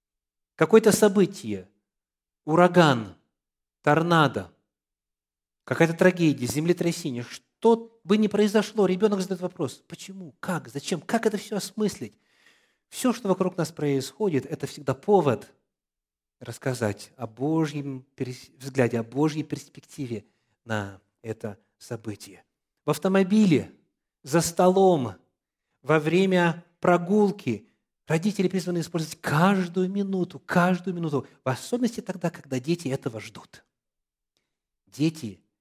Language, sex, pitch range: Russian, male, 130-185 Hz